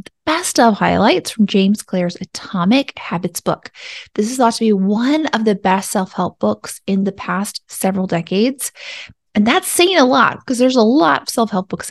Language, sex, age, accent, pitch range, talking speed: English, female, 20-39, American, 190-255 Hz, 185 wpm